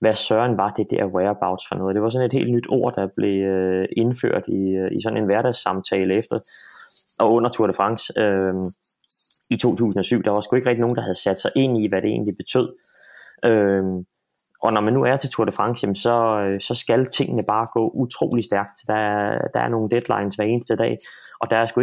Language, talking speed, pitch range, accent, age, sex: Danish, 220 wpm, 100-120 Hz, native, 20-39, male